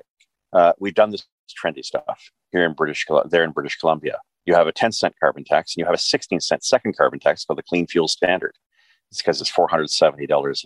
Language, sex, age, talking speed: English, male, 40-59, 205 wpm